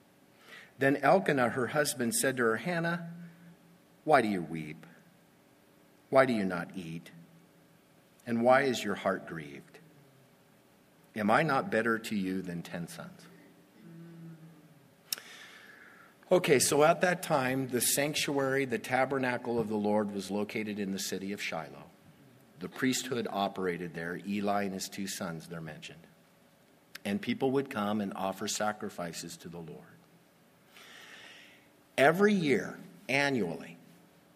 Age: 50-69